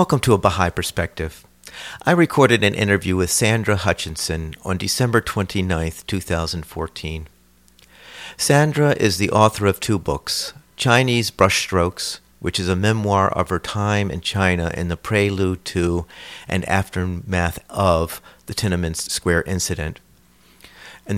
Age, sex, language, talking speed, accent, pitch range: 50-69, male, English, 130 wpm, American, 85-105 Hz